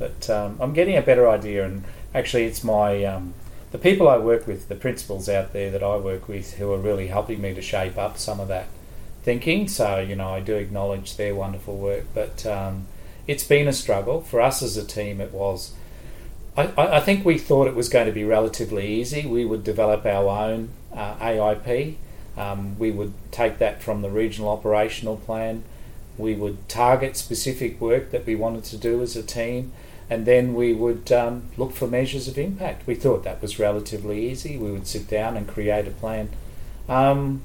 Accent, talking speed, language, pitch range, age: Australian, 200 wpm, English, 100-120 Hz, 40-59